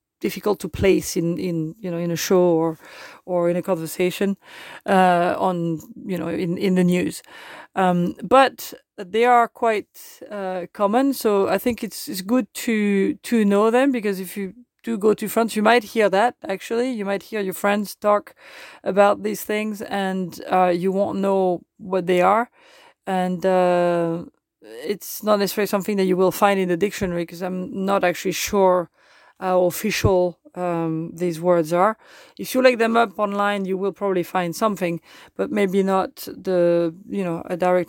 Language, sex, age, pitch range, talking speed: French, female, 40-59, 180-220 Hz, 175 wpm